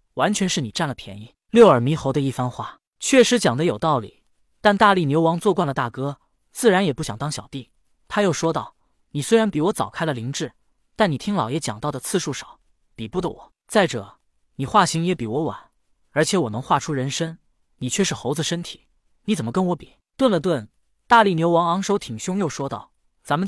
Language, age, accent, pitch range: Chinese, 20-39, native, 135-185 Hz